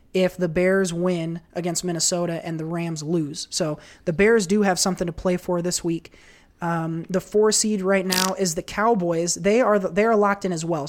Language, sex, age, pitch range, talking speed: English, male, 20-39, 170-200 Hz, 215 wpm